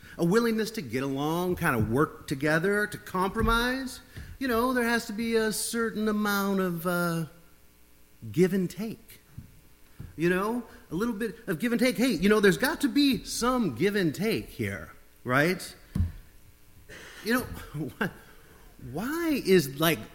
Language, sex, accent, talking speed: English, male, American, 160 wpm